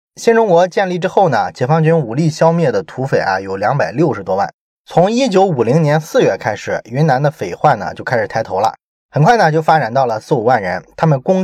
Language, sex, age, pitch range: Chinese, male, 20-39, 125-175 Hz